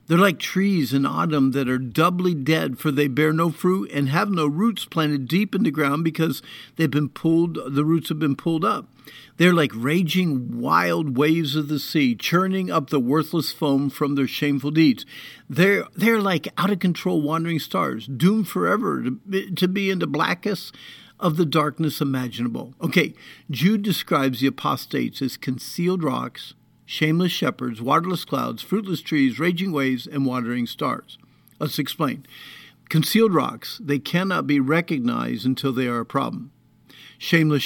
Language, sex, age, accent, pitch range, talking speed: English, male, 50-69, American, 140-180 Hz, 165 wpm